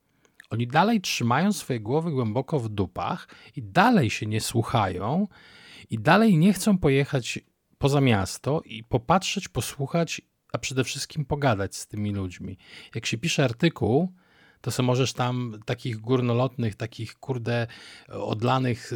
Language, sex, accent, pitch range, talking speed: Polish, male, native, 110-140 Hz, 135 wpm